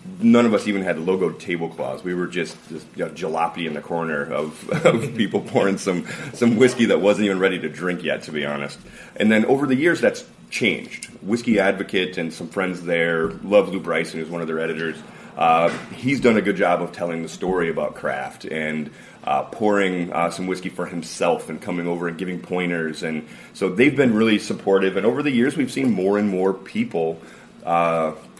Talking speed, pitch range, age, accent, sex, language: 205 wpm, 80-95 Hz, 30-49, American, male, English